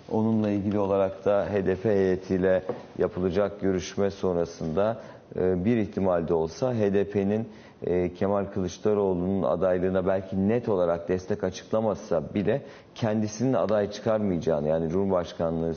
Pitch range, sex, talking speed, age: 90-105 Hz, male, 105 wpm, 50-69